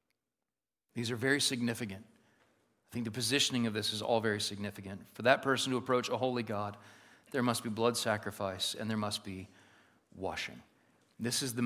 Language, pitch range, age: English, 115-155 Hz, 40-59